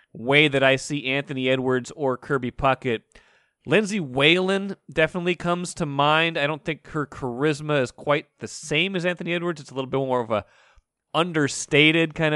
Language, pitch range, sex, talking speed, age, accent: English, 125-155 Hz, male, 175 wpm, 30-49, American